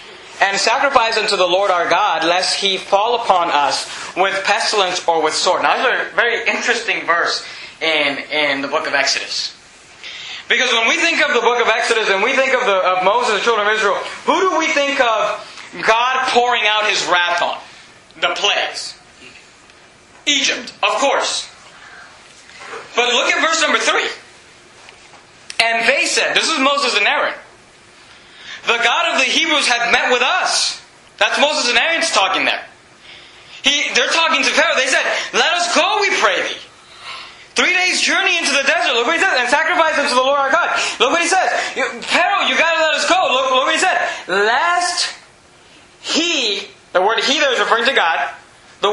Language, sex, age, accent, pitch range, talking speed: English, male, 30-49, American, 230-325 Hz, 190 wpm